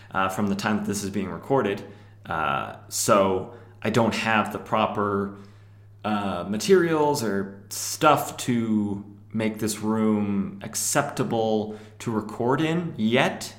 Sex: male